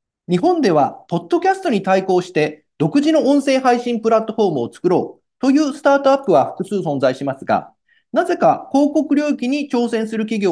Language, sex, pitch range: Japanese, male, 180-295 Hz